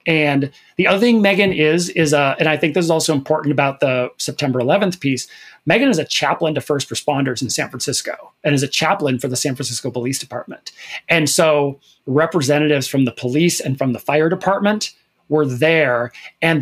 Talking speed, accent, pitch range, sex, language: 195 wpm, American, 135-165 Hz, male, English